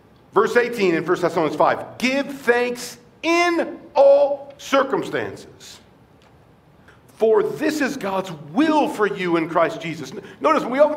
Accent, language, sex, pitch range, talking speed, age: American, English, male, 170-240 Hz, 135 wpm, 50-69